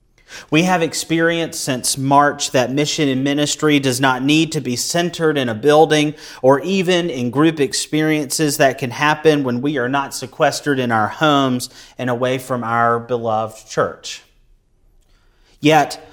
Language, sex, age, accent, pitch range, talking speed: English, male, 30-49, American, 115-150 Hz, 155 wpm